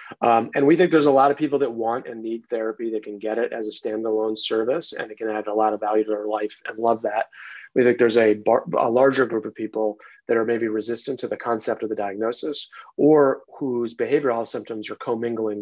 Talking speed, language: 235 wpm, English